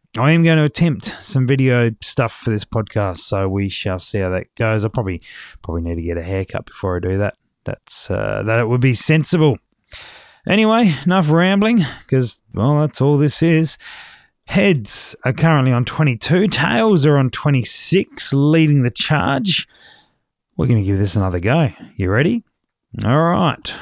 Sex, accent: male, Australian